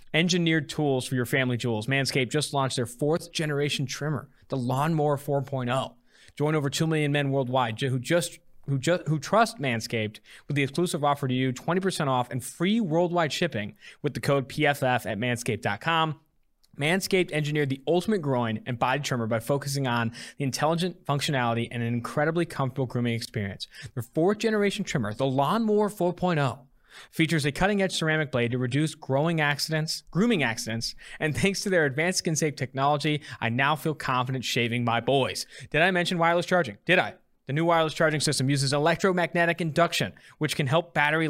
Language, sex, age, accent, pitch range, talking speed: English, male, 20-39, American, 130-170 Hz, 175 wpm